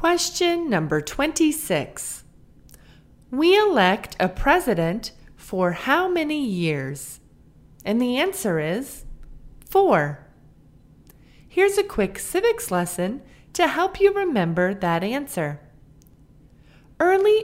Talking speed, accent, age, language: 95 wpm, American, 30-49, English